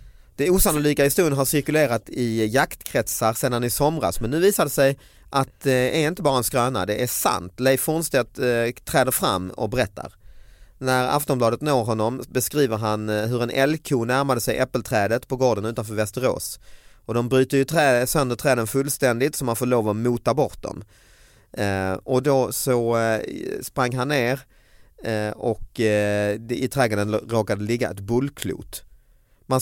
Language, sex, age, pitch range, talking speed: Swedish, male, 30-49, 115-145 Hz, 170 wpm